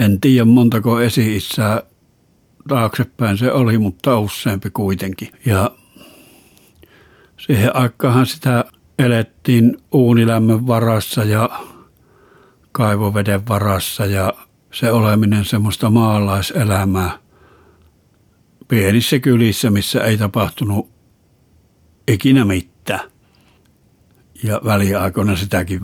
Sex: male